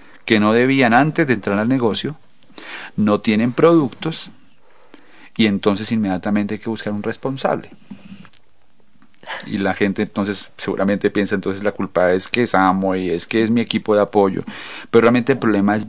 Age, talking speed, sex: 40-59, 170 wpm, male